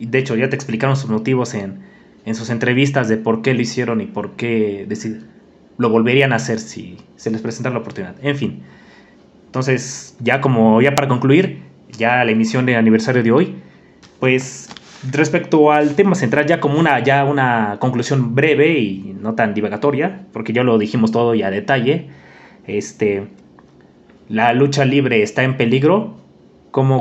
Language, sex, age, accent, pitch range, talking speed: Spanish, male, 20-39, Mexican, 115-140 Hz, 175 wpm